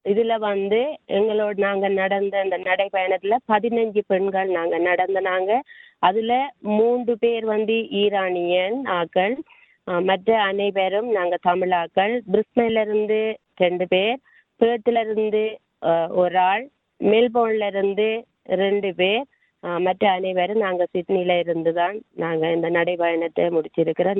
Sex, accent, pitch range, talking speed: female, native, 185-220 Hz, 110 wpm